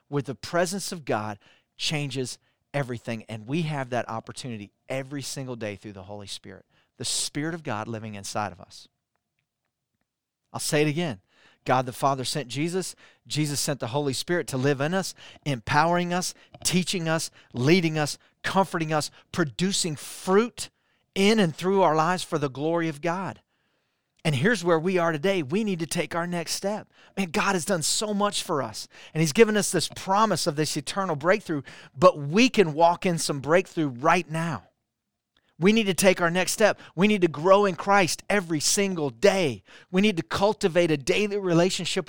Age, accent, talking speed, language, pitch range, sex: 40-59, American, 180 wpm, English, 140-185 Hz, male